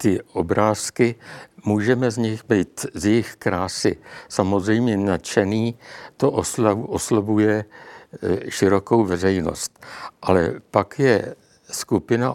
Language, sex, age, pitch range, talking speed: Czech, male, 60-79, 95-110 Hz, 90 wpm